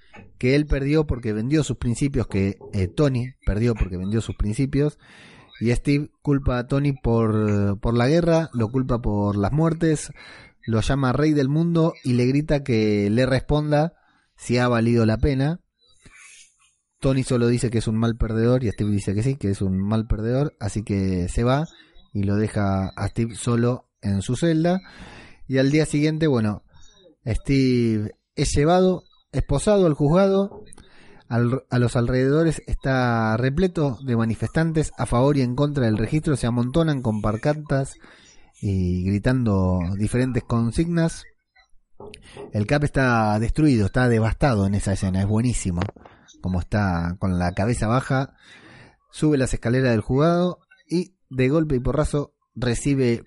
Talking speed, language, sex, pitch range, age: 155 wpm, Spanish, male, 110-150 Hz, 30-49